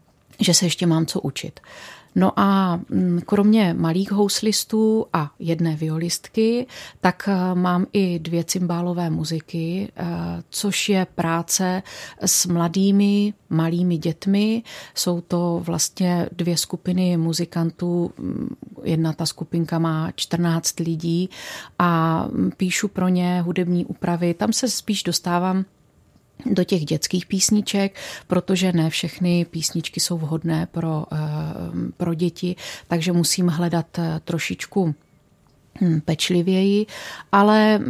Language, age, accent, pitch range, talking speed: Czech, 30-49, native, 170-190 Hz, 110 wpm